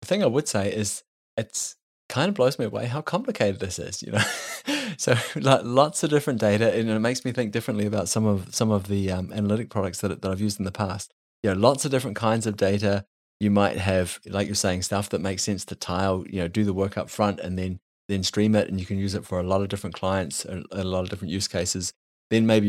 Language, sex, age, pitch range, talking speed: English, male, 20-39, 95-110 Hz, 260 wpm